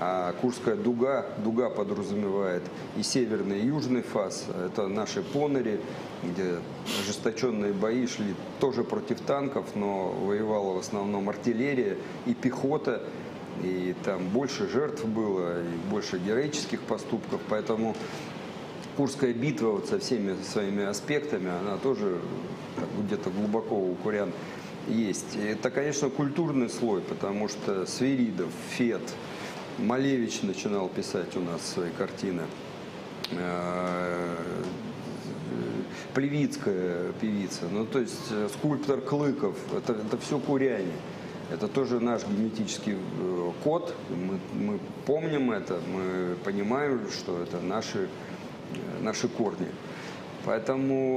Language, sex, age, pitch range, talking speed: Russian, male, 40-59, 95-130 Hz, 120 wpm